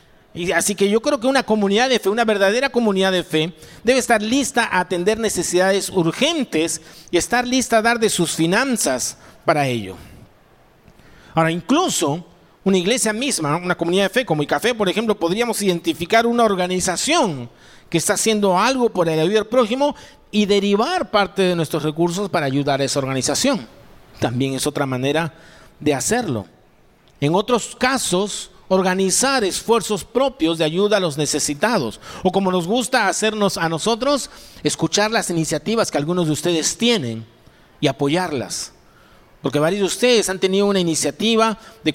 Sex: male